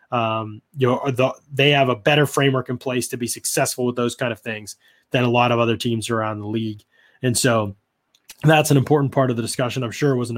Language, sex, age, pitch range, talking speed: English, male, 20-39, 115-135 Hz, 245 wpm